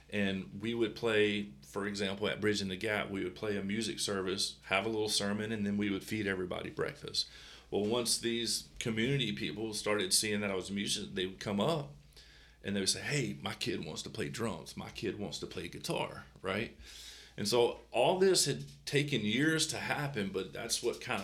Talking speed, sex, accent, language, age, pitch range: 210 wpm, male, American, English, 40-59, 90-115 Hz